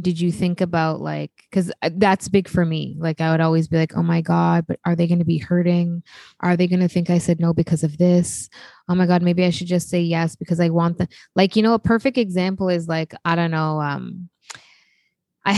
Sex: female